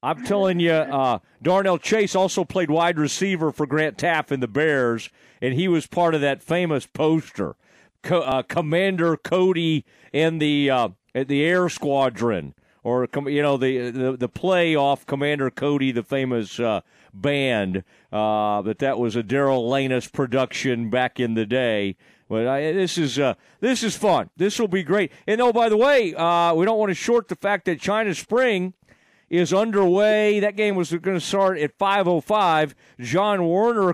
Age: 40-59